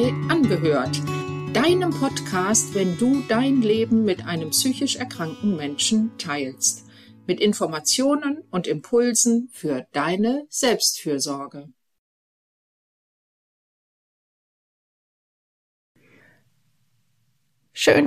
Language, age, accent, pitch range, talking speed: German, 50-69, German, 145-220 Hz, 70 wpm